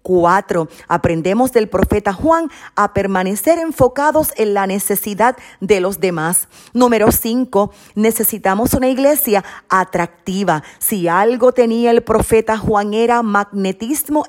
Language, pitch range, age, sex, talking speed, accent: Spanish, 185-245 Hz, 40-59, female, 120 wpm, American